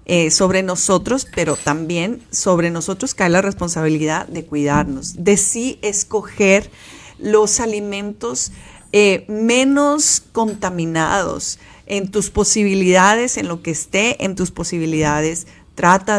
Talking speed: 115 wpm